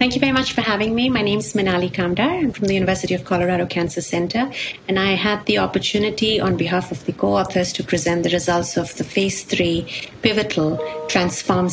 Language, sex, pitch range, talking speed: English, female, 155-190 Hz, 205 wpm